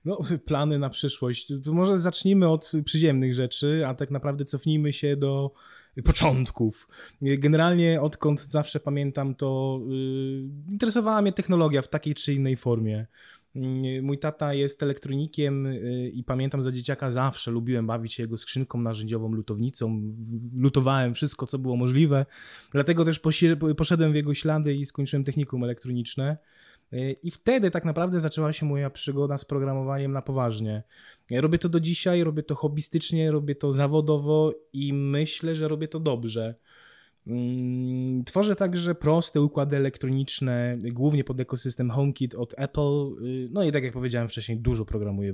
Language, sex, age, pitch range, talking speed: Polish, male, 20-39, 125-155 Hz, 140 wpm